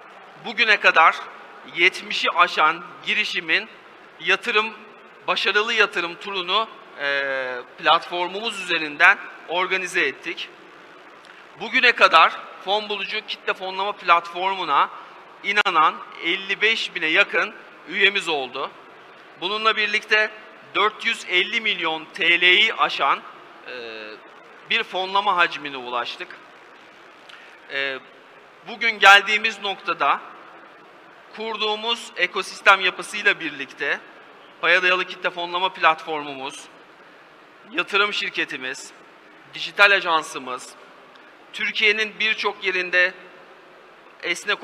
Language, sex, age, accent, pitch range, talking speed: Turkish, male, 40-59, native, 170-210 Hz, 75 wpm